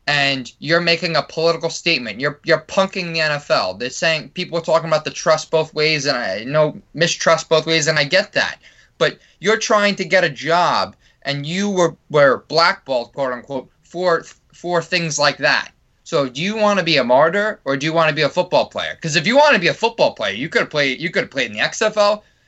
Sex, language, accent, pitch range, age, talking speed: male, English, American, 155-205 Hz, 20-39, 225 wpm